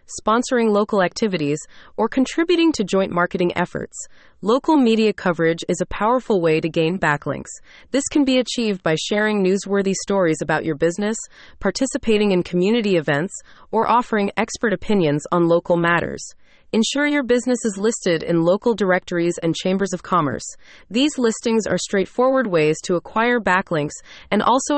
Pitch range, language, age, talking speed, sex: 170-230 Hz, English, 30-49, 155 wpm, female